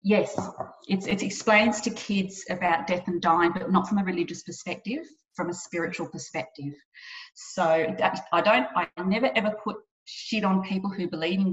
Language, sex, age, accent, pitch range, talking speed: English, female, 30-49, Australian, 175-215 Hz, 175 wpm